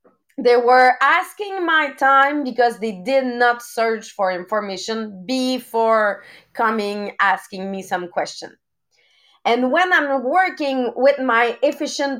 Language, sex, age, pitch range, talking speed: English, female, 30-49, 215-270 Hz, 125 wpm